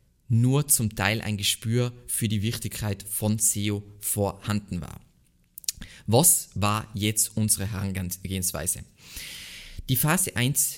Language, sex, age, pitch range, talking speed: German, male, 20-39, 105-130 Hz, 110 wpm